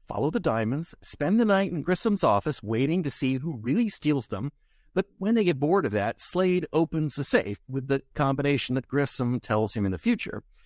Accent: American